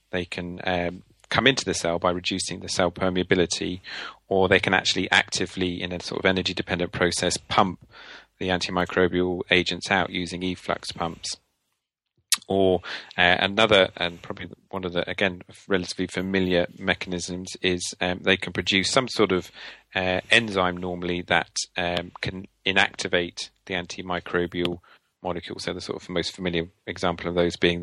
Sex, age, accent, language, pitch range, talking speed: male, 30-49, British, English, 90-95 Hz, 155 wpm